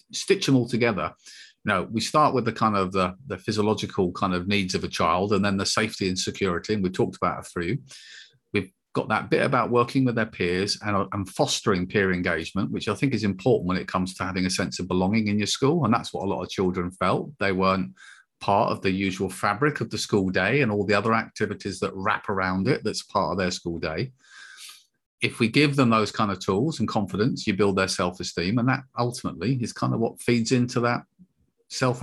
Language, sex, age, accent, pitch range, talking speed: English, male, 40-59, British, 95-130 Hz, 230 wpm